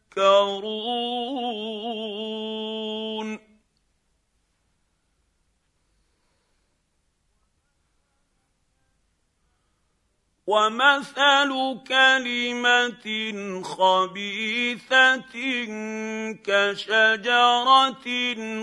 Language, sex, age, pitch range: Arabic, male, 50-69, 185-260 Hz